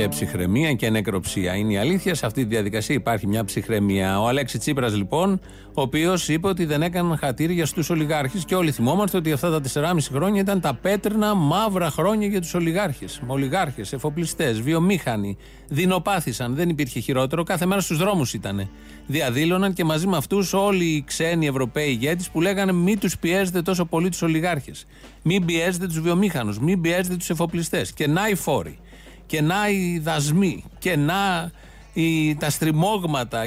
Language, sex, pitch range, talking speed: Greek, male, 135-185 Hz, 165 wpm